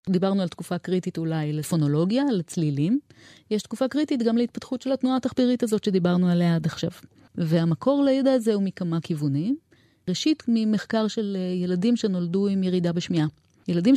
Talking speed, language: 150 wpm, Hebrew